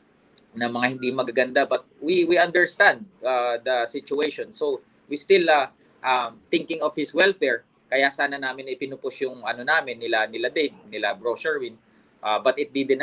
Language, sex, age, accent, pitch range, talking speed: Filipino, male, 20-39, native, 145-205 Hz, 170 wpm